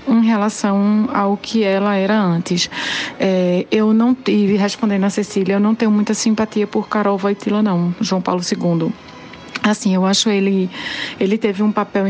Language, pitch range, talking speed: Portuguese, 185-210 Hz, 170 wpm